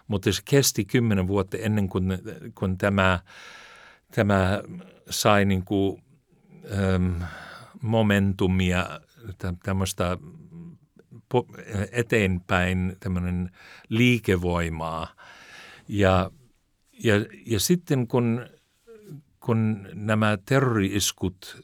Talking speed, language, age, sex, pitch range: 70 wpm, Finnish, 60-79, male, 90-115 Hz